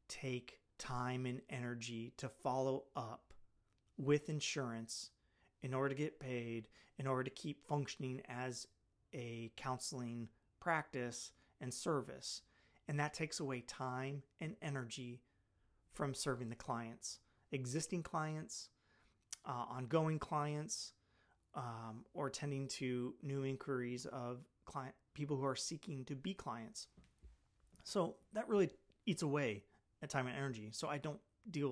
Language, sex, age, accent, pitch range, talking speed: English, male, 30-49, American, 115-145 Hz, 130 wpm